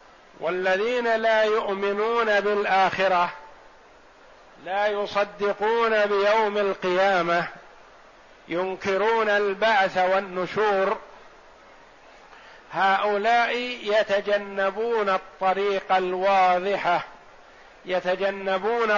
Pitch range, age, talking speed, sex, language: 190-210 Hz, 50-69, 50 wpm, male, Arabic